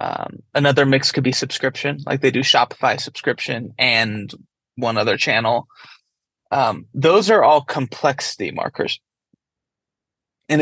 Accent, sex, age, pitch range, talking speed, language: American, male, 20-39, 130-150 Hz, 125 wpm, English